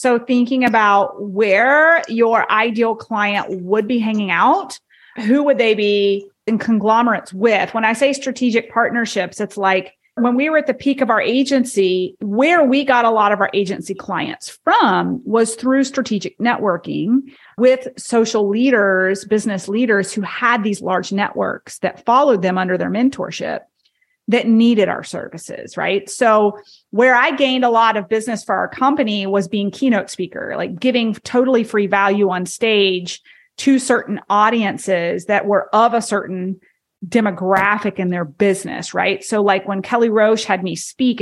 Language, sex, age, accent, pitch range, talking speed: English, female, 30-49, American, 195-245 Hz, 165 wpm